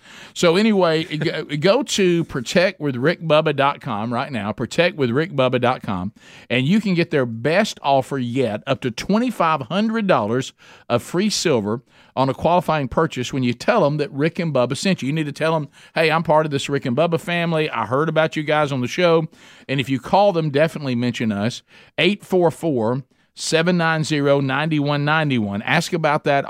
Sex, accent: male, American